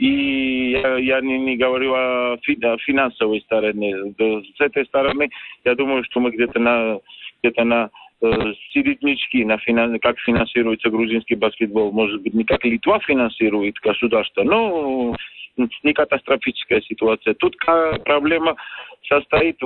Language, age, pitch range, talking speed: Russian, 40-59, 115-145 Hz, 130 wpm